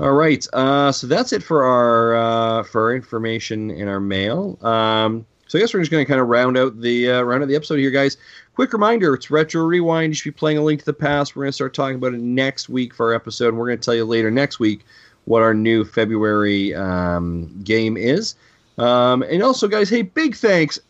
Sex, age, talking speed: male, 30-49, 225 wpm